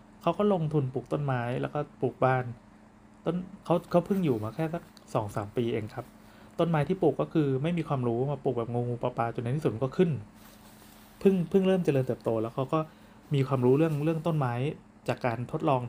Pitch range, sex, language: 115-150 Hz, male, Thai